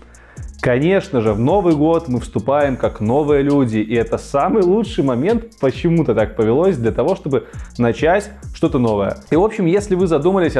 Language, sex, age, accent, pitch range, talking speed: Russian, male, 20-39, native, 120-165 Hz, 170 wpm